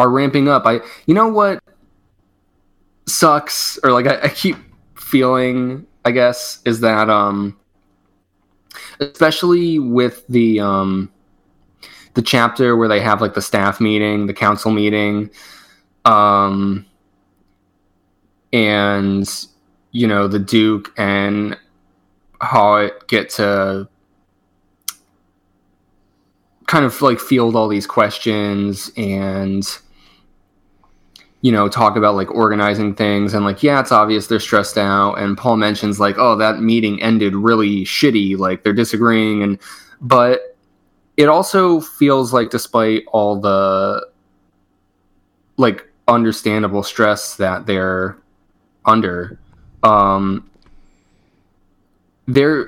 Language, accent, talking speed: English, American, 115 wpm